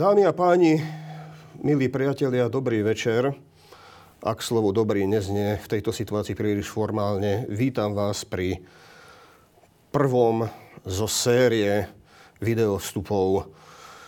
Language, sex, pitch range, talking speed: Slovak, male, 95-115 Hz, 100 wpm